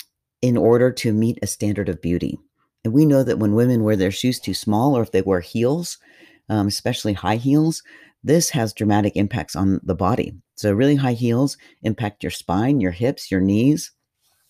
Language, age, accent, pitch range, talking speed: English, 40-59, American, 100-130 Hz, 190 wpm